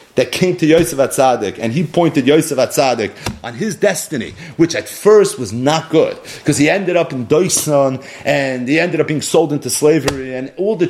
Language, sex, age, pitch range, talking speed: English, male, 40-59, 140-185 Hz, 200 wpm